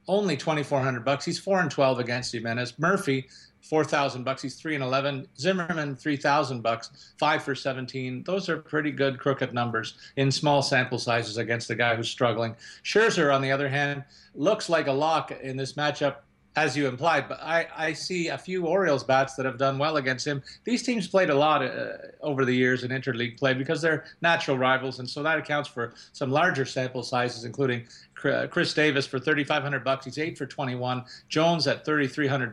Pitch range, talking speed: 125-155 Hz, 200 wpm